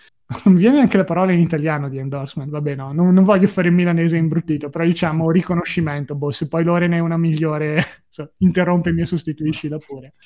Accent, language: native, Italian